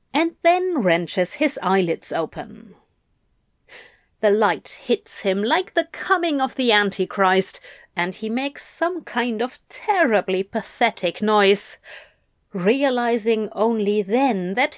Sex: female